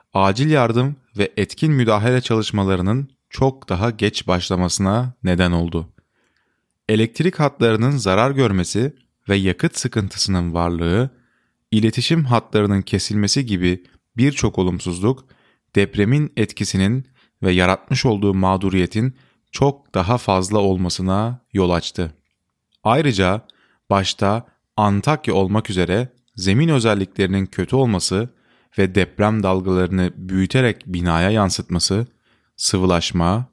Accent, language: native, Turkish